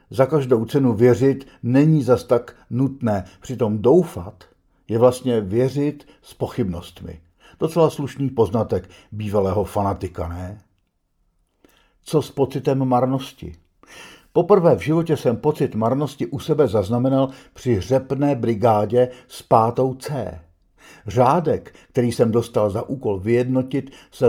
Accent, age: native, 60-79